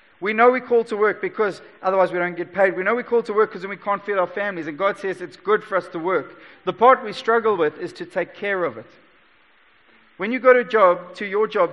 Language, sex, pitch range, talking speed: English, male, 185-240 Hz, 260 wpm